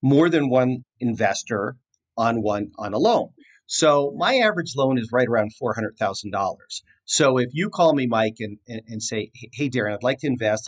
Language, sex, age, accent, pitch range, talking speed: English, male, 40-59, American, 110-135 Hz, 200 wpm